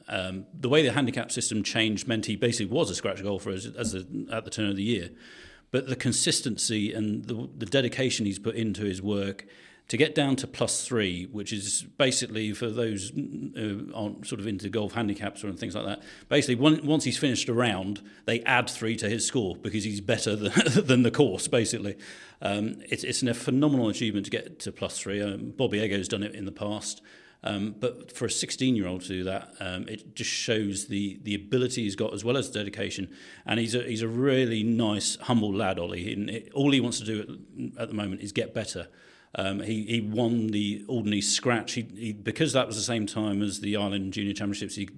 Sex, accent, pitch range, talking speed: male, British, 100-120 Hz, 215 wpm